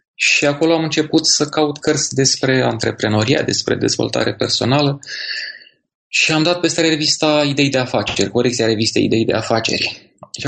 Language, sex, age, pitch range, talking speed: Romanian, male, 20-39, 120-150 Hz, 150 wpm